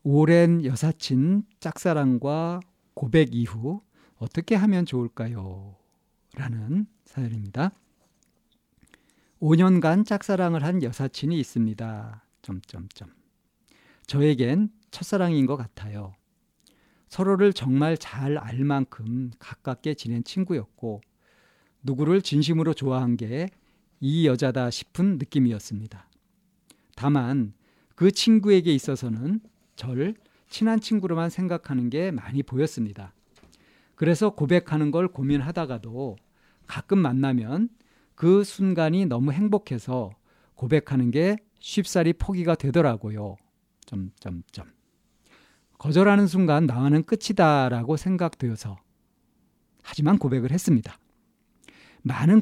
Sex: male